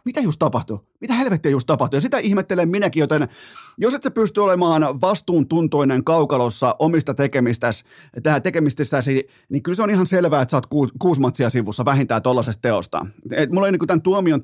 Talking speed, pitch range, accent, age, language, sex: 175 wpm, 125-160 Hz, native, 30-49, Finnish, male